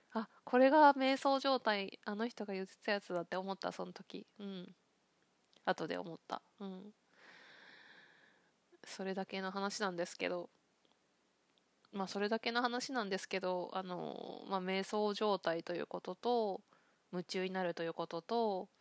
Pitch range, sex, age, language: 175-210 Hz, female, 20-39, Japanese